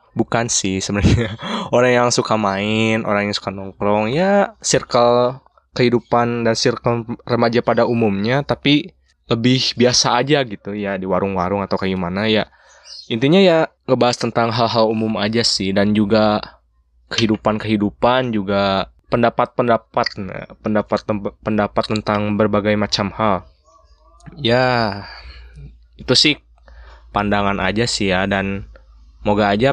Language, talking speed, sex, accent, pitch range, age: Indonesian, 120 wpm, male, native, 100-115 Hz, 20-39